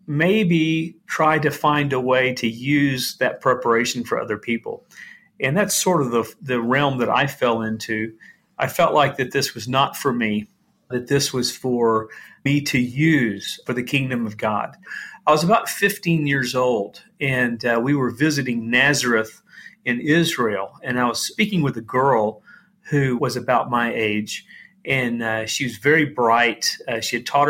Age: 40-59